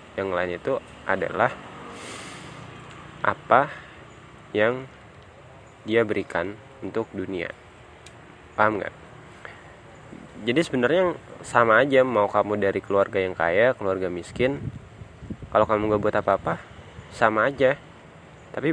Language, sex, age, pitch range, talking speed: Indonesian, male, 20-39, 100-130 Hz, 105 wpm